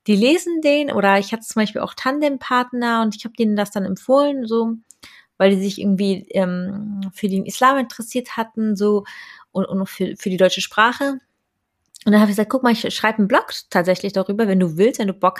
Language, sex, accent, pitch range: German, female, German, 195-240 Hz